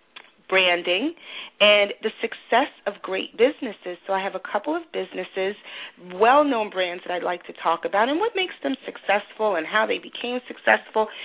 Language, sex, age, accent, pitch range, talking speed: English, female, 40-59, American, 165-220 Hz, 175 wpm